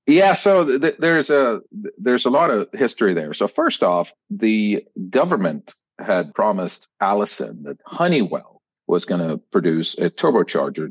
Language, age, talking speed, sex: English, 50-69, 140 wpm, male